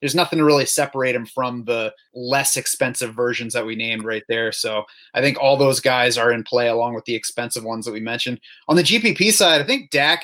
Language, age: English, 30-49